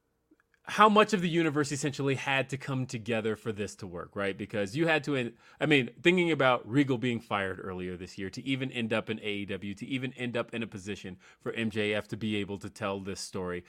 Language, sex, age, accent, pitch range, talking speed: English, male, 30-49, American, 105-155 Hz, 225 wpm